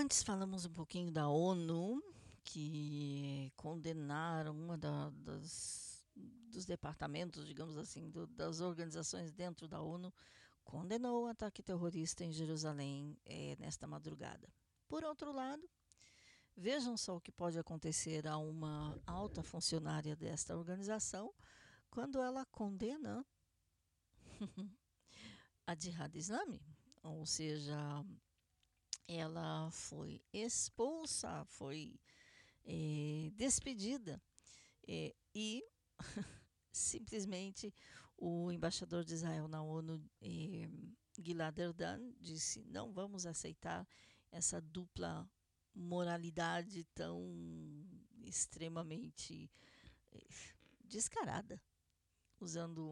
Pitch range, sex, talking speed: 150-195 Hz, female, 90 wpm